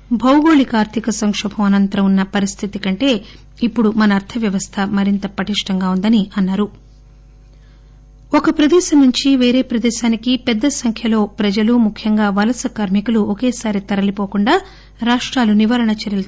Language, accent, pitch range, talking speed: English, Indian, 195-225 Hz, 105 wpm